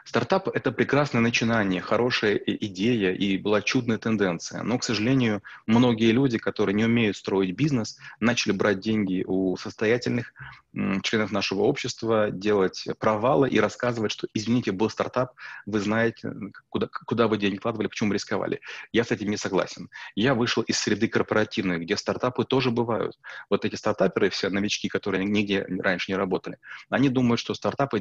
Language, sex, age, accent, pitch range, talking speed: Russian, male, 30-49, native, 100-120 Hz, 155 wpm